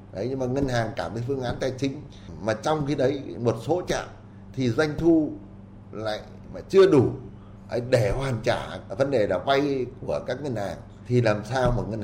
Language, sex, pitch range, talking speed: Vietnamese, male, 100-130 Hz, 205 wpm